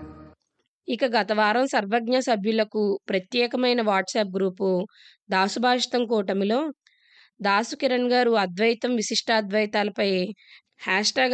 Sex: female